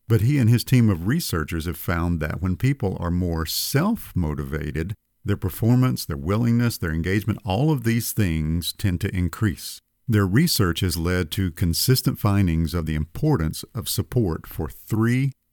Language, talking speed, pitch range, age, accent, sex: English, 160 wpm, 80-110 Hz, 50-69, American, male